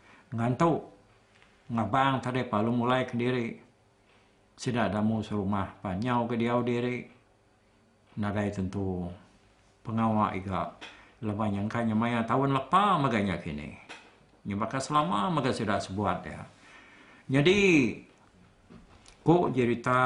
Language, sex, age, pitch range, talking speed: Malay, male, 60-79, 100-125 Hz, 100 wpm